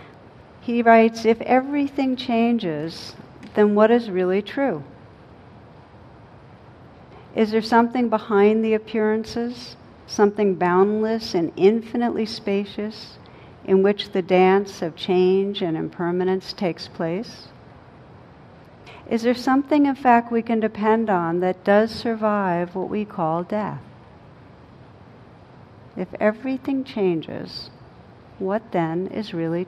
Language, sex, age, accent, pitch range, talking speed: English, female, 60-79, American, 175-220 Hz, 110 wpm